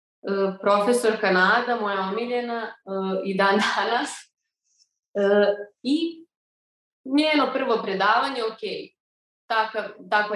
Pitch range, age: 195-240 Hz, 20-39